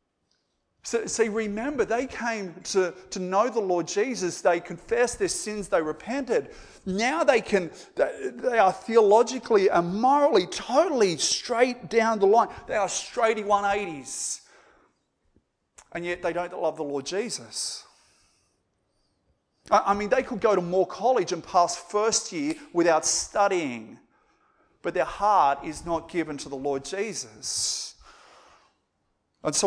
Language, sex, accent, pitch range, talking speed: English, male, Australian, 170-230 Hz, 140 wpm